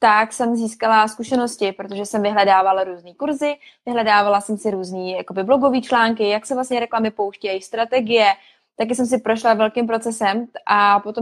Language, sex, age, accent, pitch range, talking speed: Czech, female, 20-39, native, 210-235 Hz, 155 wpm